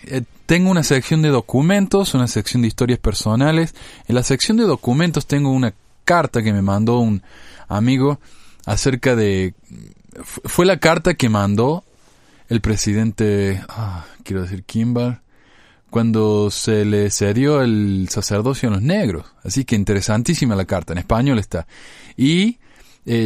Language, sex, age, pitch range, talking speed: Spanish, male, 20-39, 105-140 Hz, 145 wpm